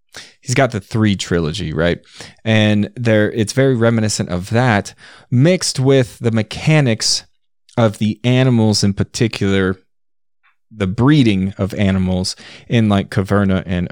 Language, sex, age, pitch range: English, male, 30-49, 100-130 Hz